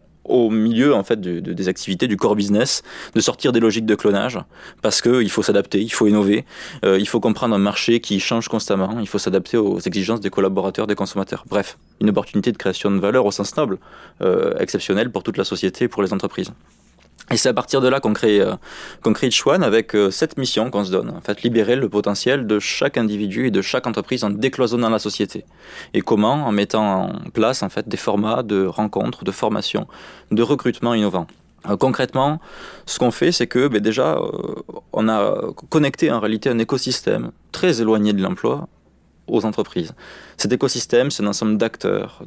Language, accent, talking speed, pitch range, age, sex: French, French, 200 wpm, 100-120 Hz, 20-39, male